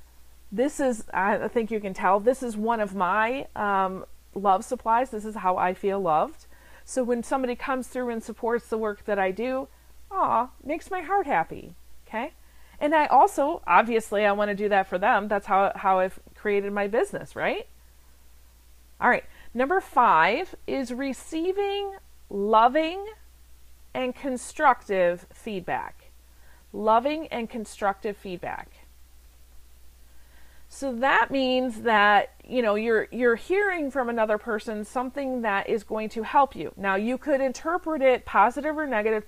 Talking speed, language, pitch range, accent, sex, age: 150 wpm, English, 200-270 Hz, American, female, 40-59